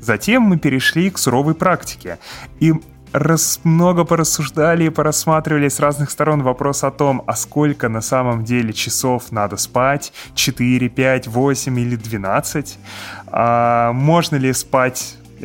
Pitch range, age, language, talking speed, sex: 110-135 Hz, 20-39, Russian, 130 wpm, male